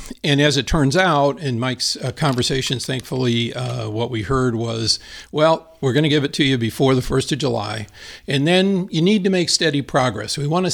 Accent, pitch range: American, 120-150 Hz